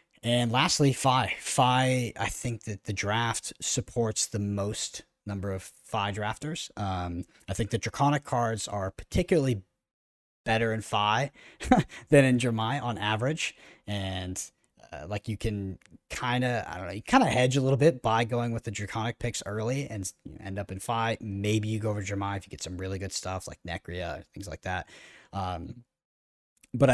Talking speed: 180 wpm